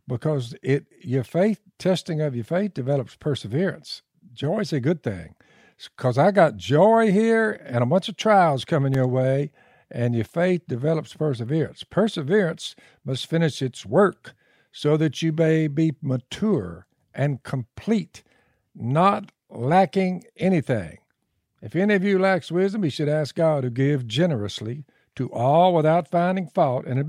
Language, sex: English, male